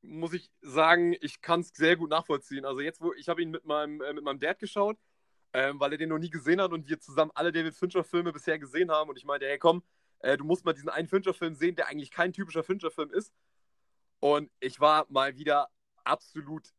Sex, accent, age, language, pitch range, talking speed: male, German, 30-49, German, 155-190 Hz, 230 wpm